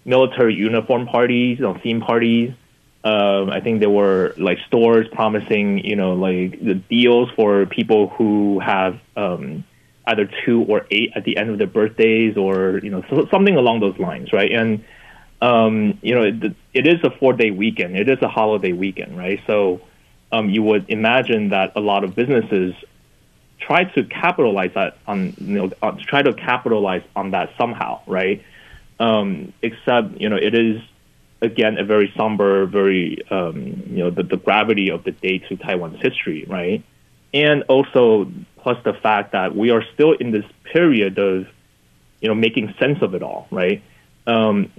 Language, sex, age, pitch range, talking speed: English, male, 30-49, 95-115 Hz, 175 wpm